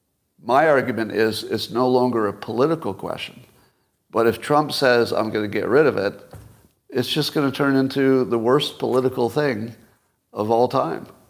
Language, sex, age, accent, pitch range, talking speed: English, male, 50-69, American, 110-135 Hz, 175 wpm